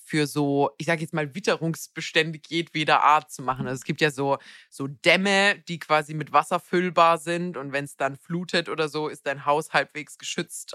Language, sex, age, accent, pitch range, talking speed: German, female, 20-39, German, 135-160 Hz, 200 wpm